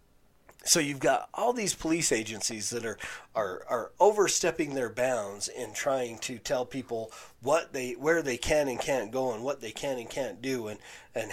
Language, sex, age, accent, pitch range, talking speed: English, male, 30-49, American, 105-130 Hz, 190 wpm